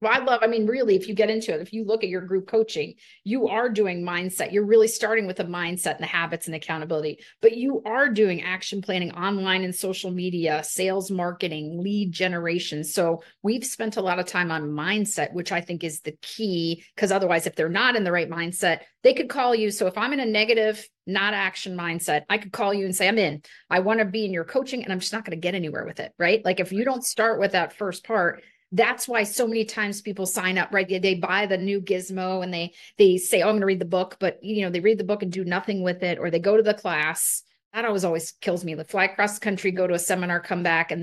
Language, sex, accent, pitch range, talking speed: English, female, American, 175-215 Hz, 260 wpm